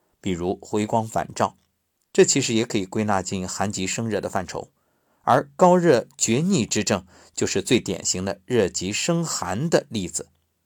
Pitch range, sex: 95-155 Hz, male